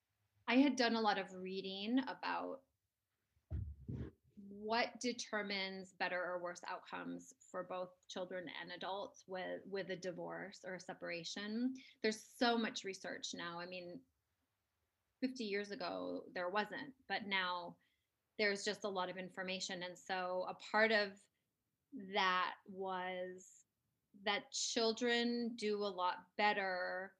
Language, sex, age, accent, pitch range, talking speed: English, female, 20-39, American, 180-215 Hz, 130 wpm